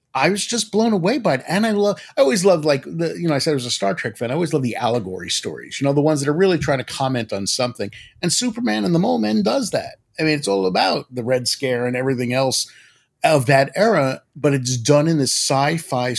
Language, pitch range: English, 125-160 Hz